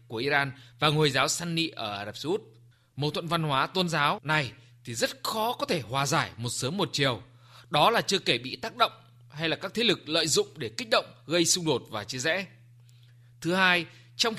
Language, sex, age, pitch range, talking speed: Vietnamese, male, 20-39, 125-190 Hz, 220 wpm